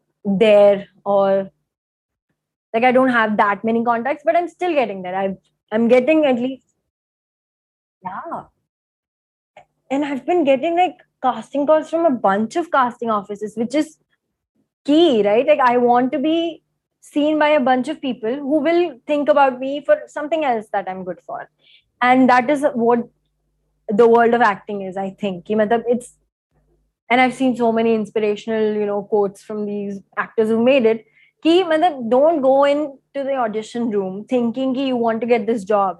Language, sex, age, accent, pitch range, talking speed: Hindi, female, 20-39, native, 210-270 Hz, 175 wpm